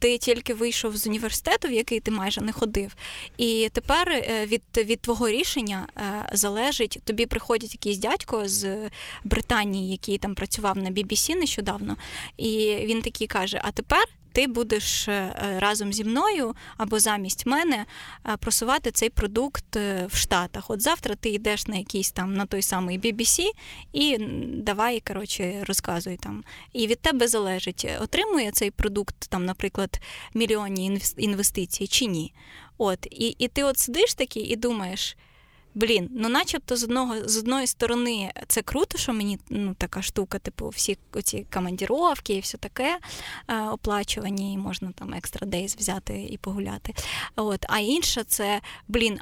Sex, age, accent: female, 20-39, native